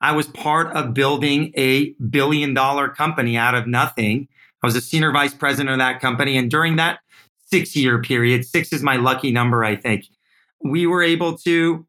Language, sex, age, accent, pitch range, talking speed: English, male, 40-59, American, 130-170 Hz, 180 wpm